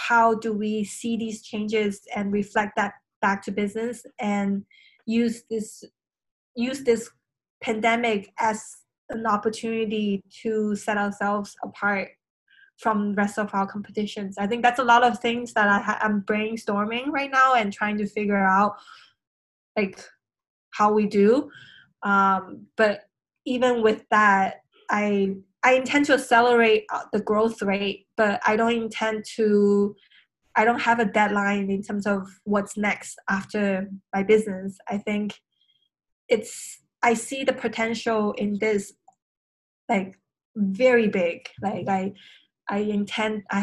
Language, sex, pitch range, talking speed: English, female, 200-225 Hz, 140 wpm